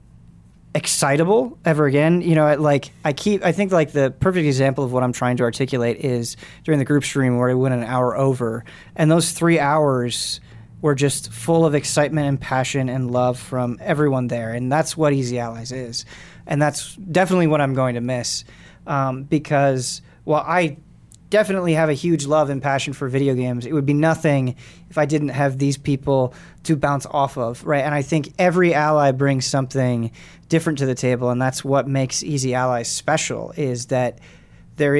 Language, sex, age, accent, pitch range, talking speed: English, male, 20-39, American, 125-155 Hz, 190 wpm